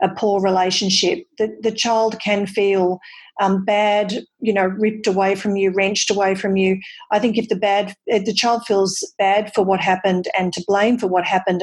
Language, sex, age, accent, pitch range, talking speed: English, female, 40-59, Australian, 190-220 Hz, 200 wpm